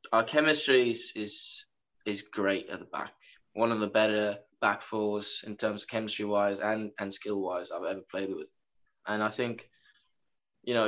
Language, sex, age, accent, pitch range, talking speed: English, male, 10-29, British, 100-110 Hz, 170 wpm